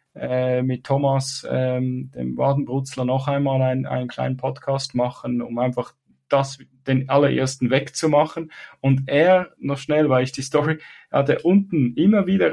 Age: 10-29